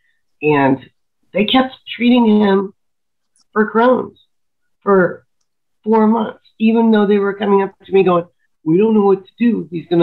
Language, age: English, 50-69